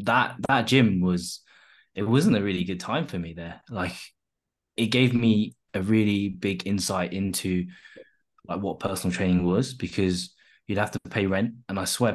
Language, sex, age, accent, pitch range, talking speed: English, male, 20-39, British, 90-105 Hz, 180 wpm